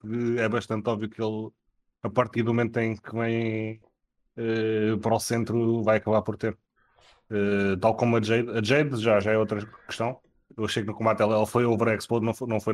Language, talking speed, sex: Portuguese, 205 wpm, male